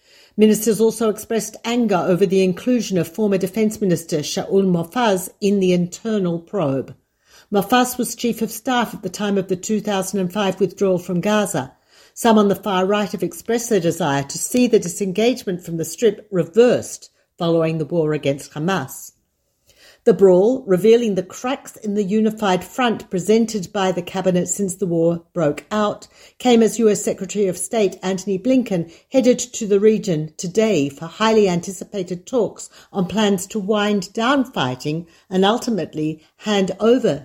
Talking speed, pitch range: 160 wpm, 180-225 Hz